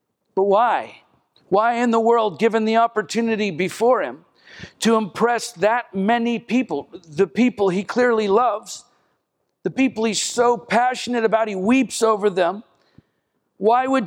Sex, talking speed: male, 140 wpm